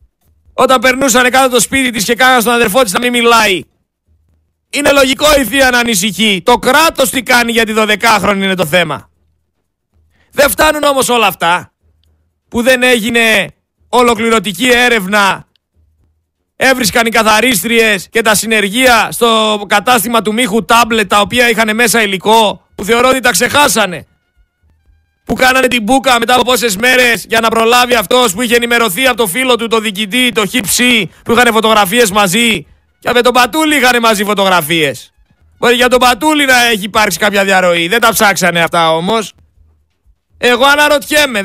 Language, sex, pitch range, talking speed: Greek, male, 180-250 Hz, 160 wpm